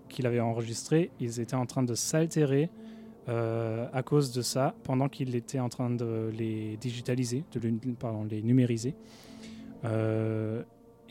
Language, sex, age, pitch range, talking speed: French, male, 20-39, 115-130 Hz, 125 wpm